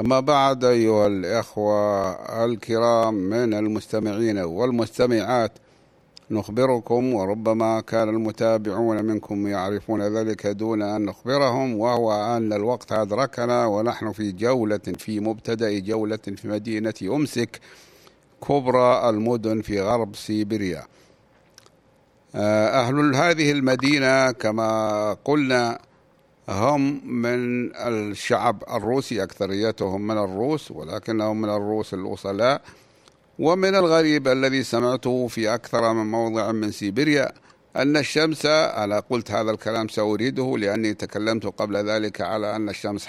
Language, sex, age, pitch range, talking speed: Arabic, male, 60-79, 105-125 Hz, 105 wpm